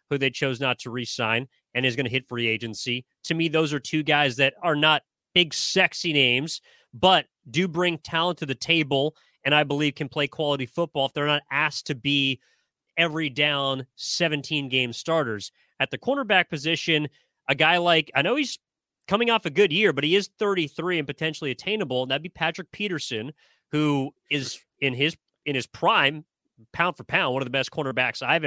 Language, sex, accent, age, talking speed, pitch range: English, male, American, 30-49, 195 wpm, 135-165 Hz